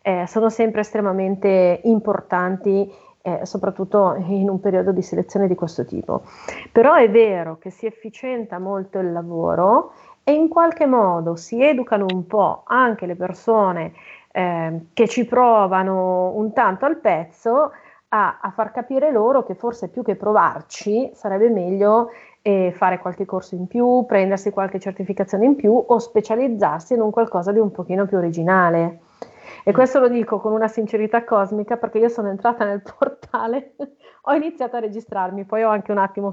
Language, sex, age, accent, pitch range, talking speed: Italian, female, 30-49, native, 190-235 Hz, 165 wpm